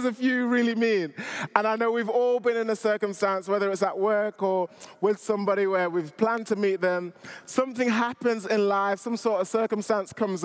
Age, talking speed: 20-39, 200 wpm